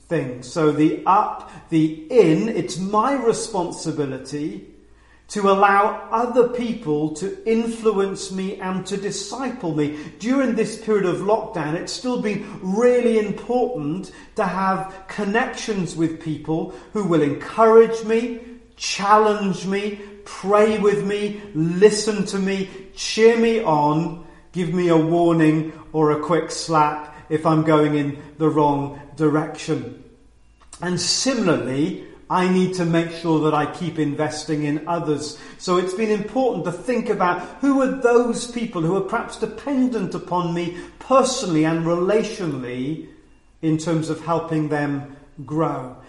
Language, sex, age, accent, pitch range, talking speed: English, male, 40-59, British, 155-215 Hz, 135 wpm